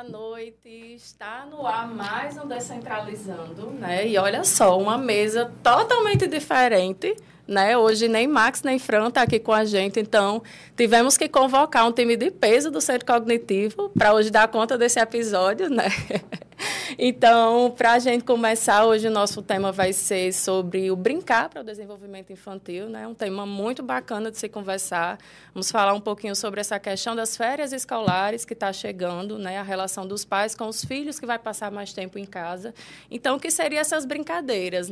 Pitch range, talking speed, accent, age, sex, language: 200-245 Hz, 180 wpm, Brazilian, 20-39, female, Portuguese